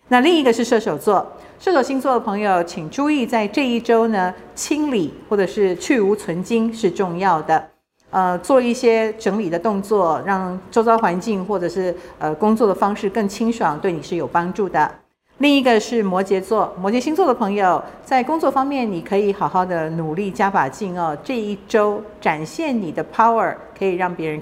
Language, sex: Chinese, female